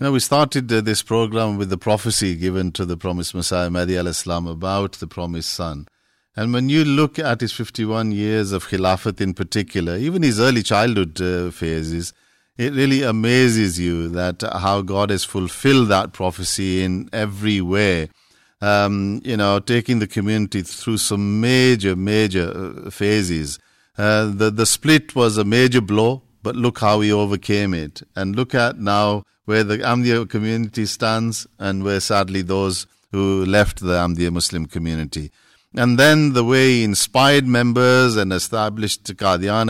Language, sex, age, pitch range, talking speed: English, male, 50-69, 95-120 Hz, 160 wpm